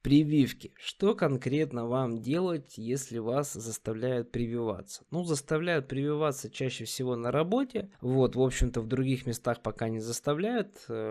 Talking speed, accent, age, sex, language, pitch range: 135 wpm, native, 20-39, male, Russian, 120-150 Hz